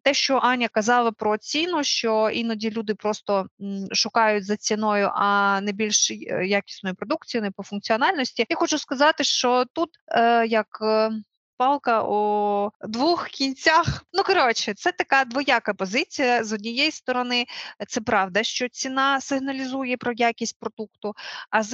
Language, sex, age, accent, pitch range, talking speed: Ukrainian, female, 20-39, native, 200-250 Hz, 145 wpm